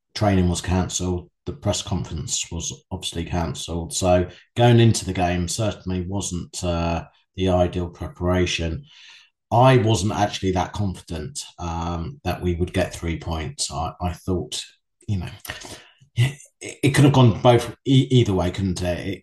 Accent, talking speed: British, 155 wpm